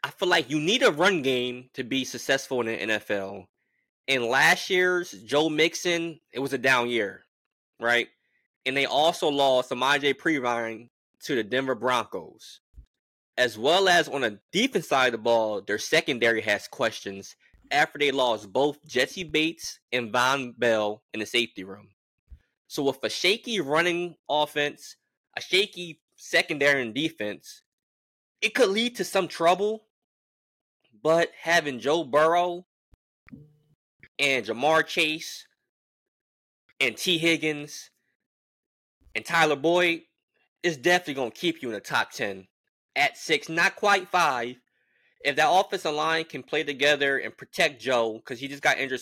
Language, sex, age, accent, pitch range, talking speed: English, male, 20-39, American, 120-165 Hz, 150 wpm